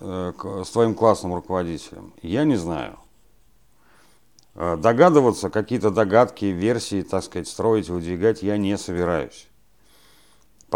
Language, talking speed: Russian, 110 wpm